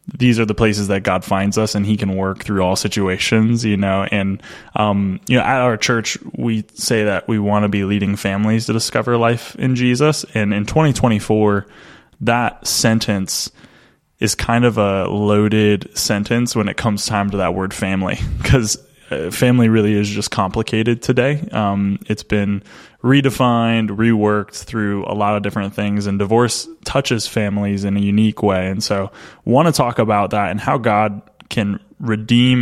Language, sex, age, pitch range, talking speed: English, male, 20-39, 100-115 Hz, 175 wpm